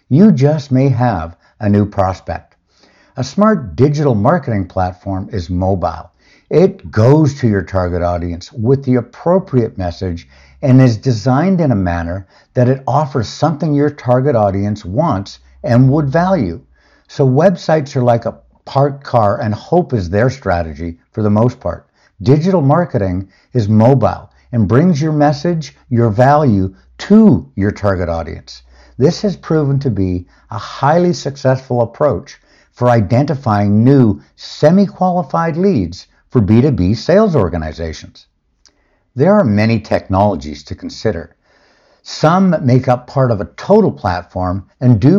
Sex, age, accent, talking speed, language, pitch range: male, 60-79, American, 140 wpm, English, 95-145 Hz